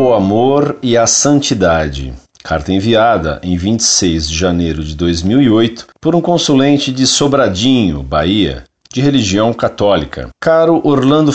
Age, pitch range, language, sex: 50-69, 95-150 Hz, Portuguese, male